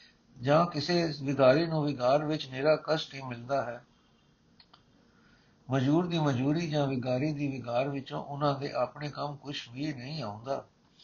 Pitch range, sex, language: 135-165 Hz, male, Punjabi